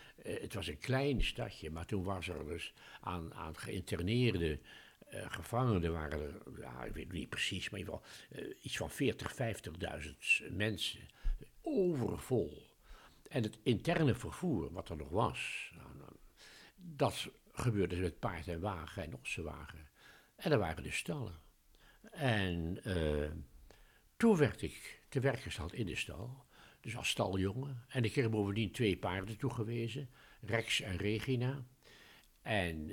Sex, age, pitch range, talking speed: male, 60-79, 90-125 Hz, 150 wpm